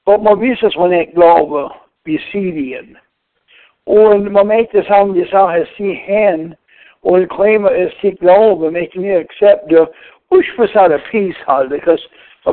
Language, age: English, 60-79